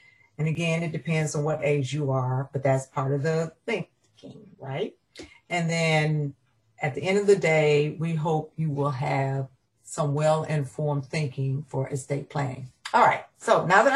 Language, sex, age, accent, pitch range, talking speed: English, female, 50-69, American, 135-165 Hz, 170 wpm